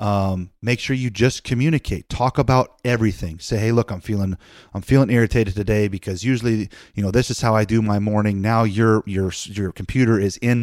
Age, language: 30-49, English